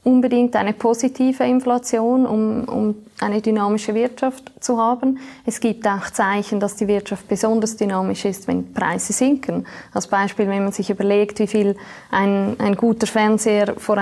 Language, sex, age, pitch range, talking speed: German, female, 20-39, 205-230 Hz, 160 wpm